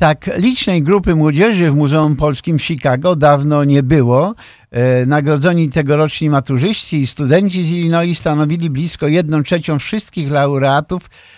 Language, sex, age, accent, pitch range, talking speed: Polish, male, 50-69, native, 145-180 Hz, 130 wpm